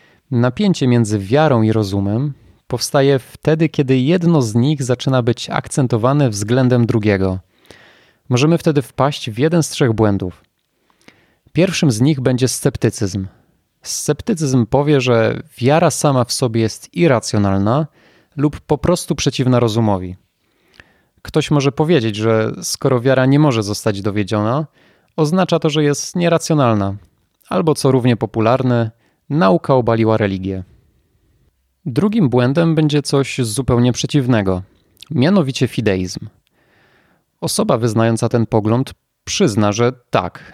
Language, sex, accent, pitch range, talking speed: Polish, male, native, 110-150 Hz, 120 wpm